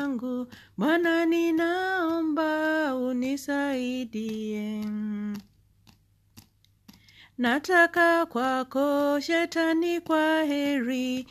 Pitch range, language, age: 250-325 Hz, Swahili, 40-59